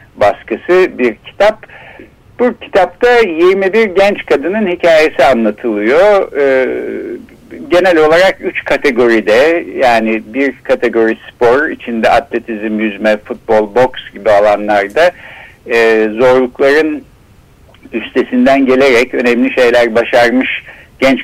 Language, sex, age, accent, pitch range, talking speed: Turkish, male, 60-79, native, 115-175 Hz, 95 wpm